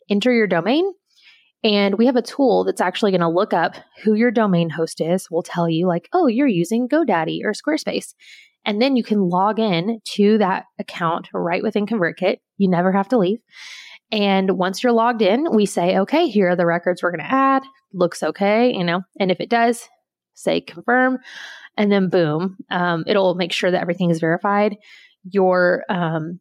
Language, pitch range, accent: English, 175-220 Hz, American